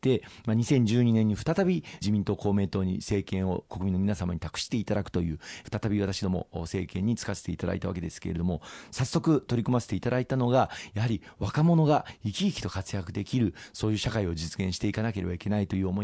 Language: Japanese